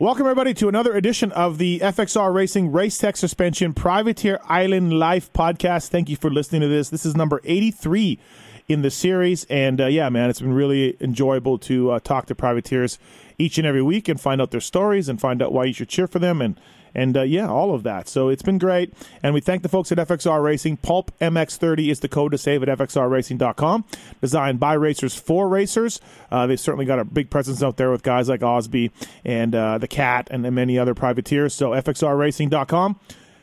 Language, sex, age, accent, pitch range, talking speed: English, male, 30-49, American, 135-180 Hz, 210 wpm